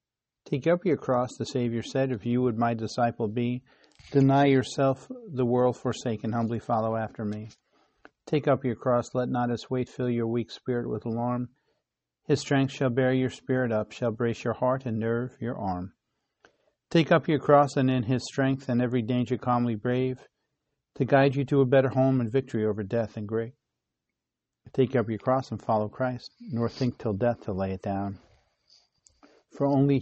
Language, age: English, 50-69